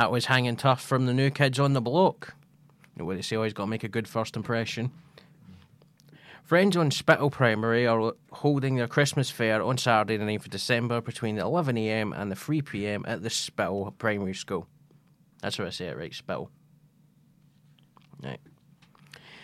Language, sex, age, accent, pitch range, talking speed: English, male, 20-39, British, 115-150 Hz, 180 wpm